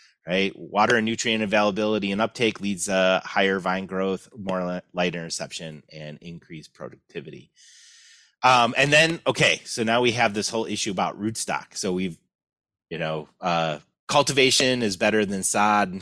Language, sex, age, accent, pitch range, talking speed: English, male, 30-49, American, 95-130 Hz, 155 wpm